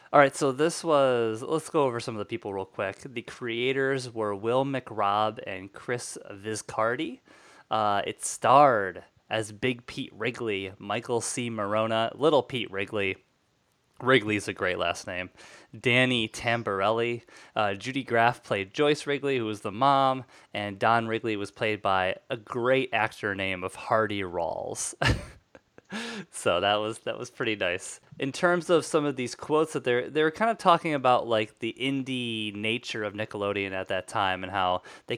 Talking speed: 165 wpm